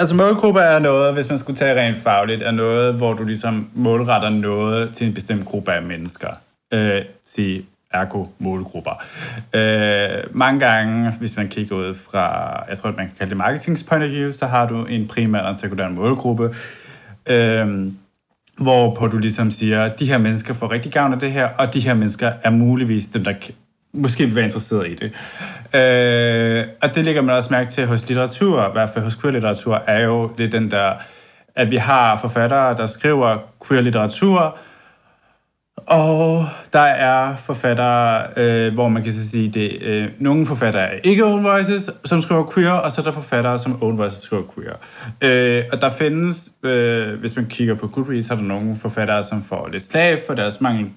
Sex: male